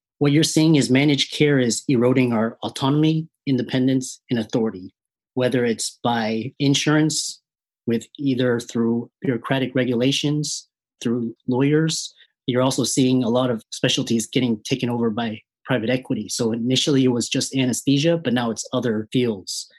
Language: English